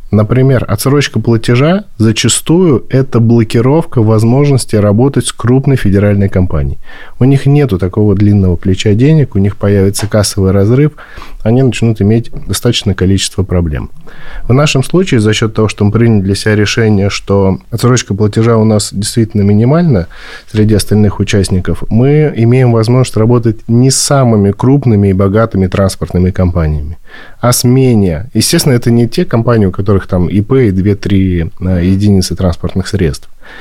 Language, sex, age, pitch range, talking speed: Russian, male, 20-39, 95-120 Hz, 145 wpm